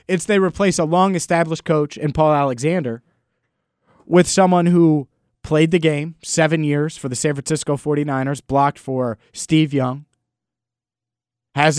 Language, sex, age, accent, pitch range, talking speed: English, male, 20-39, American, 125-160 Hz, 135 wpm